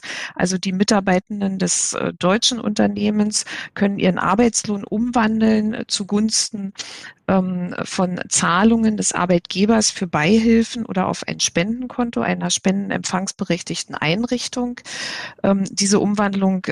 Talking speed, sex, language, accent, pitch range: 100 wpm, female, German, German, 180-220 Hz